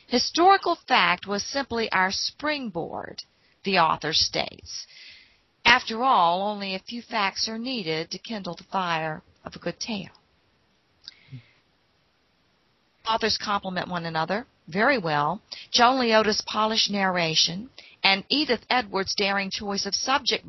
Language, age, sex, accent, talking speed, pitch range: English, 50-69, female, American, 125 wpm, 175-230 Hz